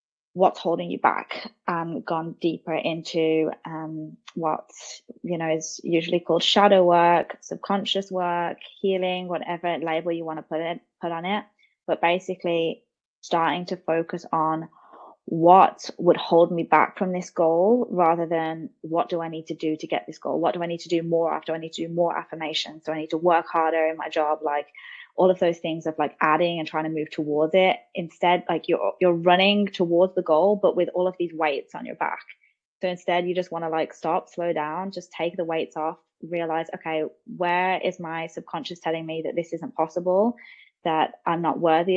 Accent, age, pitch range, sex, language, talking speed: British, 20-39, 160-180 Hz, female, English, 200 wpm